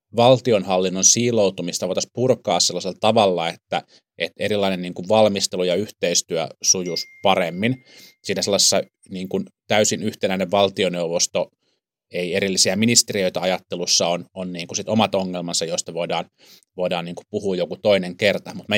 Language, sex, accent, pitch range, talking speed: Finnish, male, native, 90-110 Hz, 145 wpm